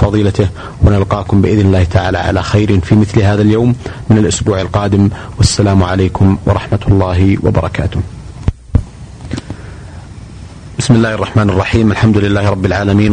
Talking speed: 125 wpm